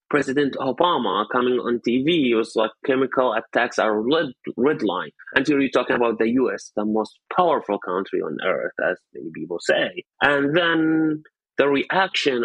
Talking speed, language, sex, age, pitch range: 165 wpm, English, male, 30-49, 125-155 Hz